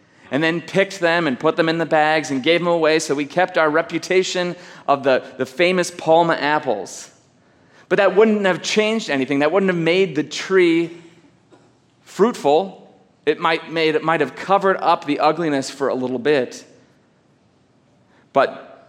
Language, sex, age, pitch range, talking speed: English, male, 30-49, 135-175 Hz, 170 wpm